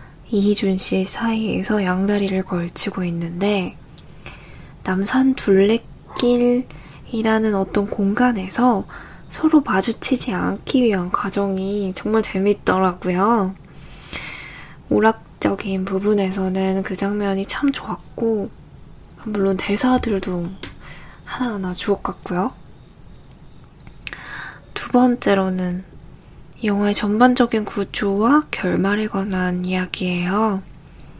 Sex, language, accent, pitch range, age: female, Korean, native, 185-225 Hz, 20-39